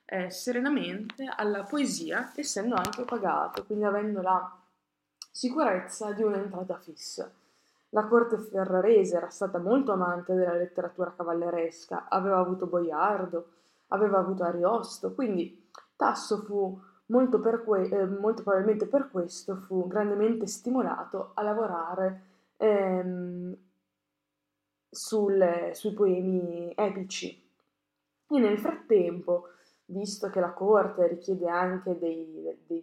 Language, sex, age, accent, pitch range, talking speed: Italian, female, 20-39, native, 175-210 Hz, 105 wpm